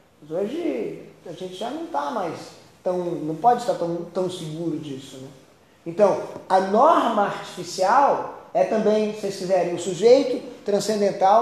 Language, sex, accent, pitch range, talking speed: Portuguese, male, Brazilian, 175-230 Hz, 150 wpm